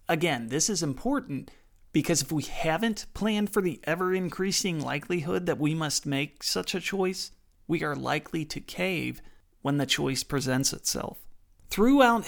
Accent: American